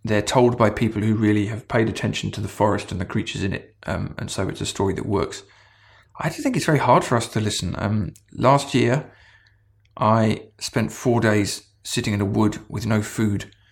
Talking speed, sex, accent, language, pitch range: 215 wpm, male, British, English, 100-110 Hz